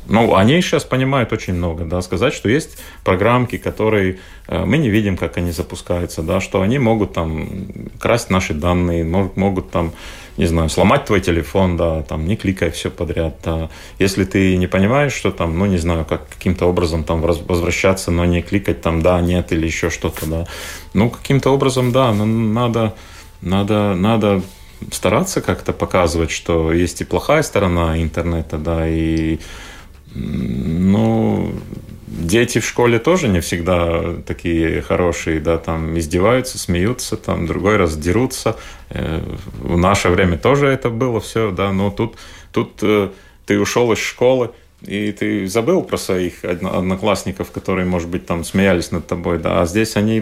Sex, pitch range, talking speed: male, 85-105 Hz, 160 wpm